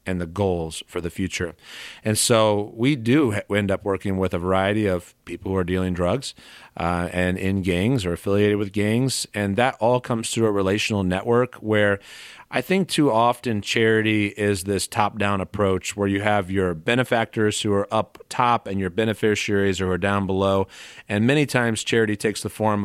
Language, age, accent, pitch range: English, 40-59, American, 95-115 Hz